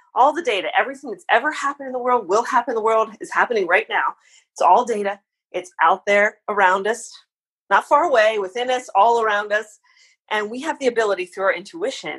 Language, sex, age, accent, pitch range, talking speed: English, female, 30-49, American, 175-225 Hz, 210 wpm